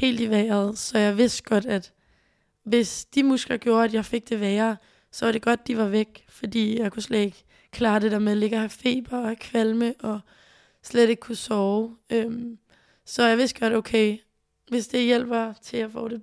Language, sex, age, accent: Danish, female, 20-39, native